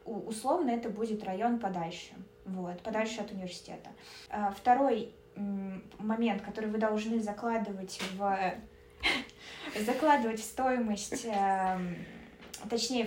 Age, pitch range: 20-39, 195-230 Hz